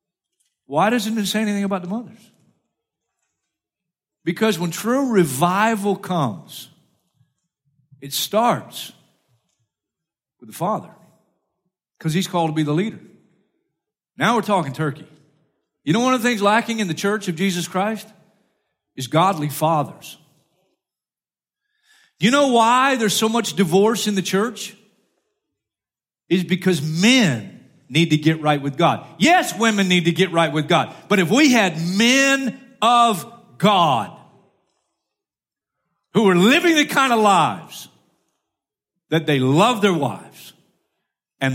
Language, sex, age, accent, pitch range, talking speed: English, male, 50-69, American, 150-210 Hz, 135 wpm